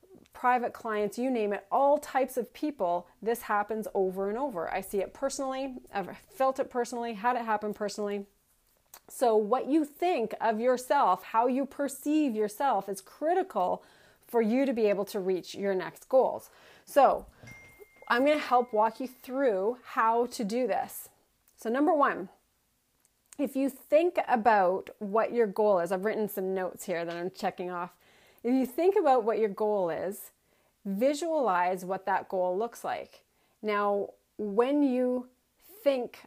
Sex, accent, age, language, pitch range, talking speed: female, American, 30-49, English, 200-255 Hz, 160 wpm